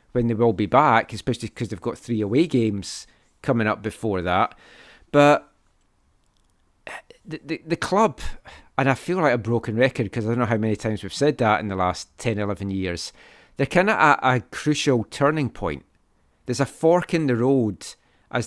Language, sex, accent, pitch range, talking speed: English, male, British, 110-145 Hz, 190 wpm